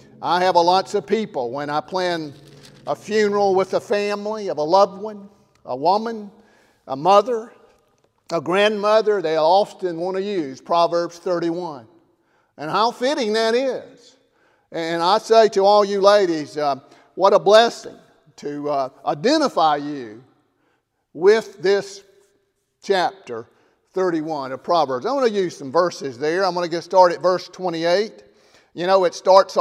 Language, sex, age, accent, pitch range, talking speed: English, male, 50-69, American, 165-215 Hz, 155 wpm